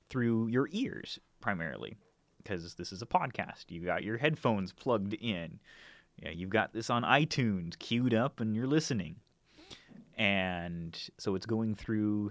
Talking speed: 150 wpm